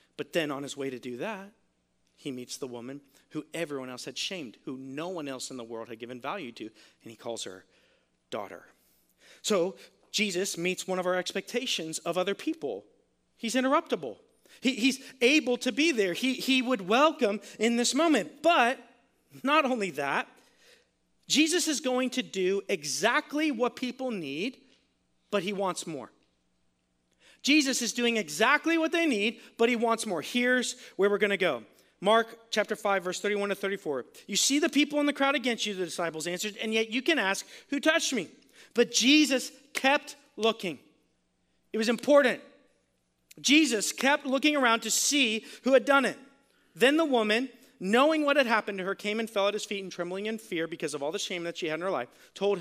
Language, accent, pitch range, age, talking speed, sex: English, American, 170-260 Hz, 40-59, 190 wpm, male